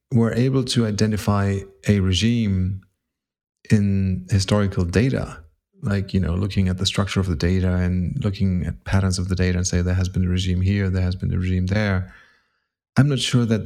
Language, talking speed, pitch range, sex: English, 195 wpm, 95-105 Hz, male